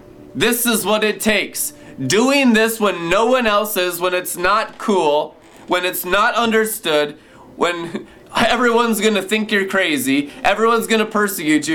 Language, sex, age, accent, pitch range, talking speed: English, male, 30-49, American, 175-225 Hz, 165 wpm